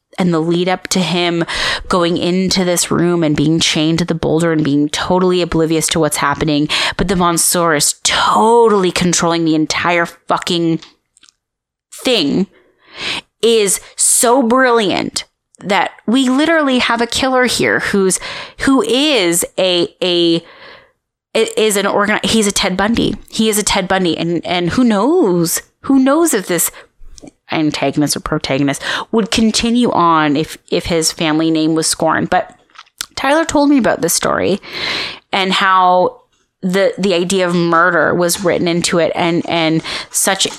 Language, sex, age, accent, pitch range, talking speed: English, female, 20-39, American, 165-230 Hz, 150 wpm